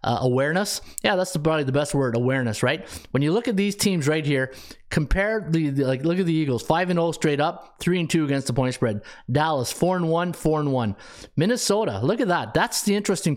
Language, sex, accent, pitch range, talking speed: English, male, American, 140-185 Hz, 235 wpm